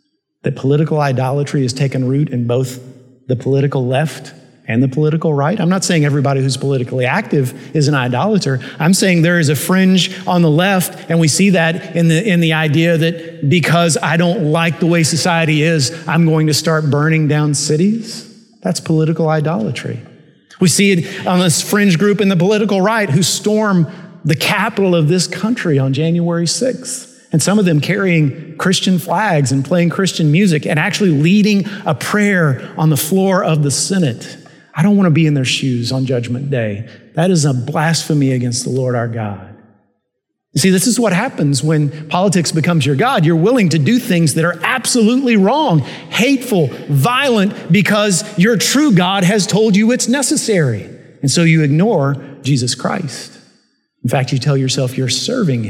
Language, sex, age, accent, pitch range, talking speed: English, male, 50-69, American, 140-190 Hz, 180 wpm